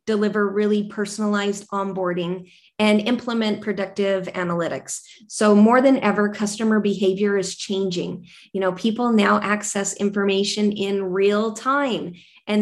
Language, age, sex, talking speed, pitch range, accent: English, 30-49, female, 125 wpm, 190-215 Hz, American